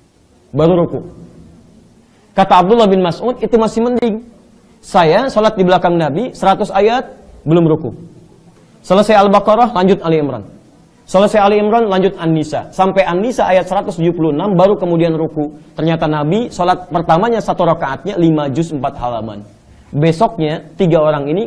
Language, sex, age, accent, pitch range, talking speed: Indonesian, male, 30-49, native, 150-195 Hz, 135 wpm